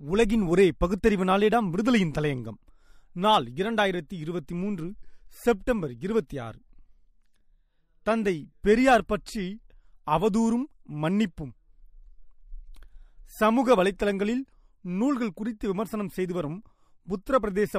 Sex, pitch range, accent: male, 175-225 Hz, native